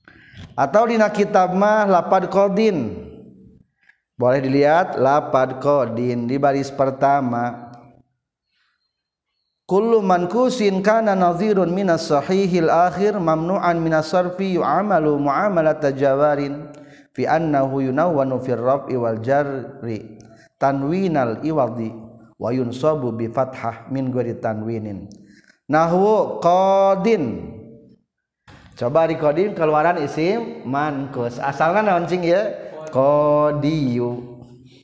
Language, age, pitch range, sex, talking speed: Indonesian, 50-69, 125-165 Hz, male, 95 wpm